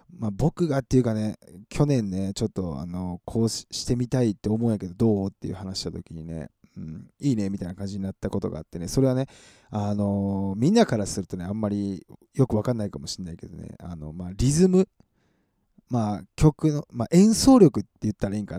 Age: 20-39